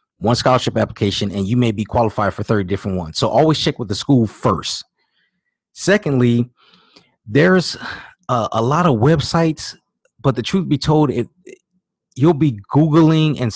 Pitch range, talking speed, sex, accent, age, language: 110-140 Hz, 155 wpm, male, American, 30-49, English